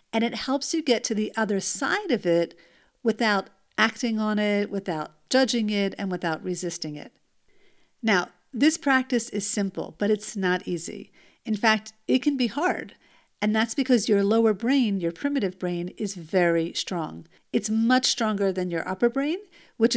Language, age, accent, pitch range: English, 50-69, American, 185-240 Hz